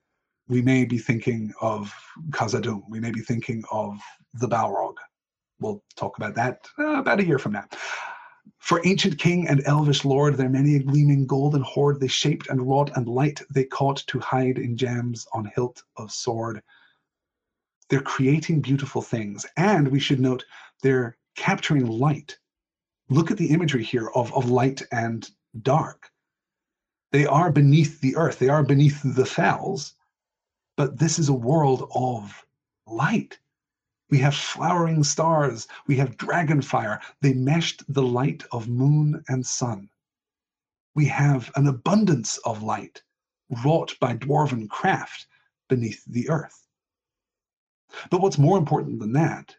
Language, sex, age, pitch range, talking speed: English, male, 30-49, 125-150 Hz, 150 wpm